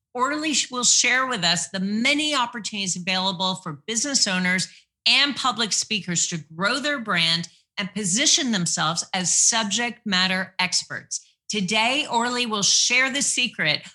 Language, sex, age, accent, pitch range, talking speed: English, female, 40-59, American, 170-230 Hz, 140 wpm